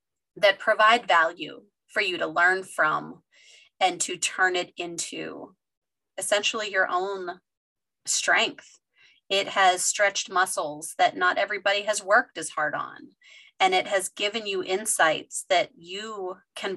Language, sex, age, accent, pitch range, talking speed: English, female, 30-49, American, 185-300 Hz, 135 wpm